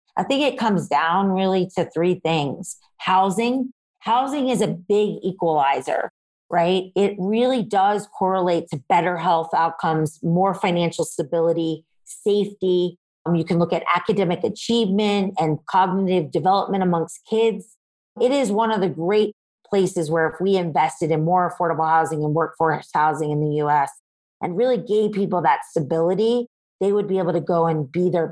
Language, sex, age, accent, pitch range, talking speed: English, female, 40-59, American, 165-205 Hz, 160 wpm